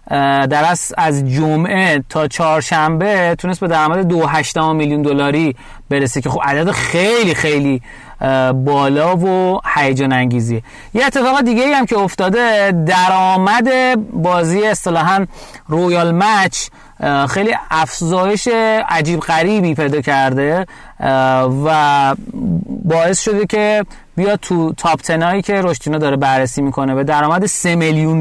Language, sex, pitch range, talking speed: Persian, male, 140-195 Hz, 120 wpm